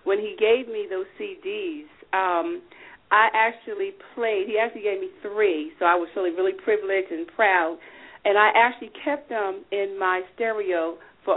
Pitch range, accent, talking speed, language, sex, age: 200-325 Hz, American, 170 wpm, English, female, 40-59